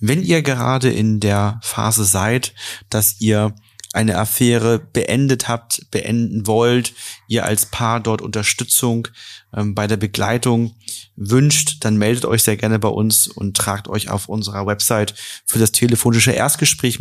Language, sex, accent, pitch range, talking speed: German, male, German, 100-115 Hz, 150 wpm